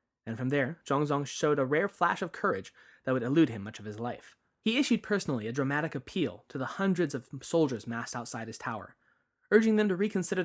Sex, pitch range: male, 125-160 Hz